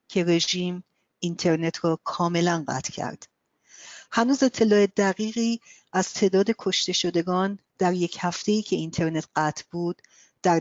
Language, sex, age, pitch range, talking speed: Persian, female, 40-59, 165-195 Hz, 125 wpm